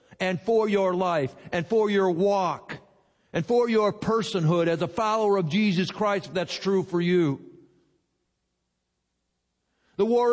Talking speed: 145 wpm